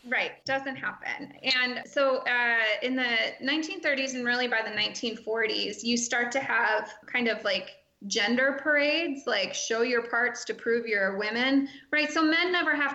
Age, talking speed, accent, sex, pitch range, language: 20-39, 165 wpm, American, female, 230-275 Hz, English